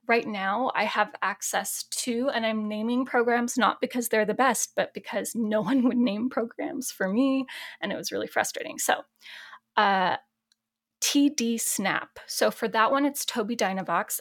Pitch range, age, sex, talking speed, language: 195-255 Hz, 10-29, female, 170 wpm, English